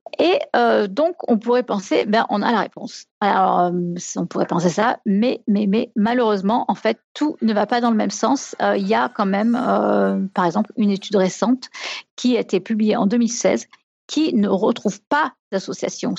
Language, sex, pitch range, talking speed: French, female, 205-250 Hz, 200 wpm